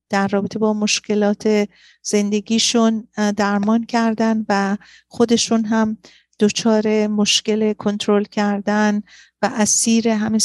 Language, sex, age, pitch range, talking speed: Persian, female, 40-59, 210-225 Hz, 100 wpm